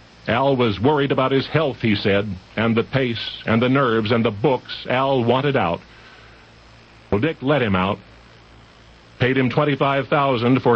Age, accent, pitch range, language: 50-69, American, 115-160 Hz, English